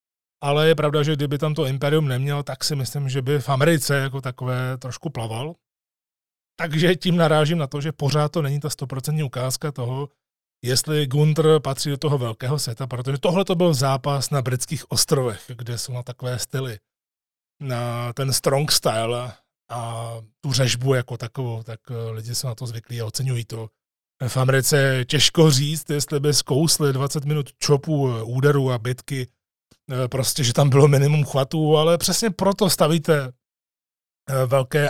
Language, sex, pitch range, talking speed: Czech, male, 125-150 Hz, 165 wpm